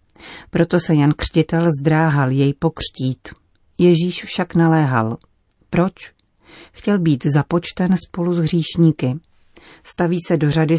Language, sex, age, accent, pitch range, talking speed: Czech, female, 40-59, native, 140-165 Hz, 115 wpm